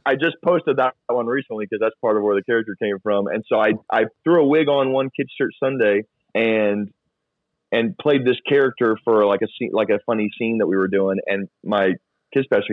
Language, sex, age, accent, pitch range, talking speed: English, male, 30-49, American, 90-105 Hz, 225 wpm